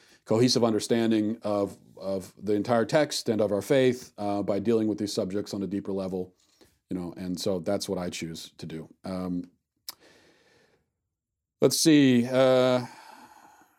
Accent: American